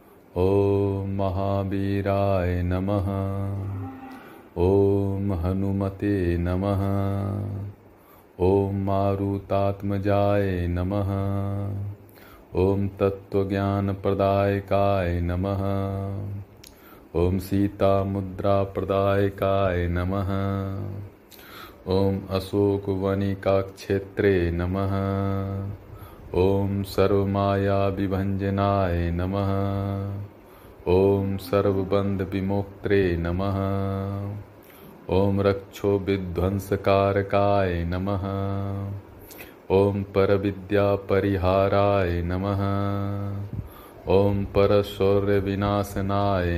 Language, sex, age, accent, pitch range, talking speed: Hindi, male, 40-59, native, 95-100 Hz, 40 wpm